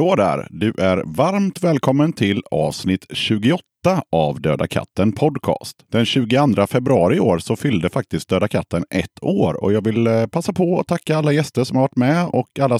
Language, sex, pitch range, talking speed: Swedish, male, 100-140 Hz, 180 wpm